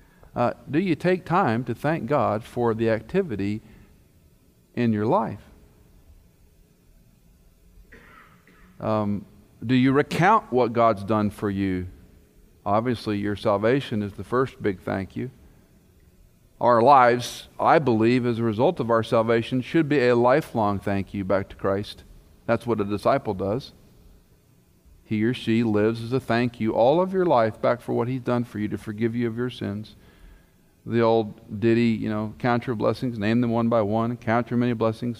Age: 50-69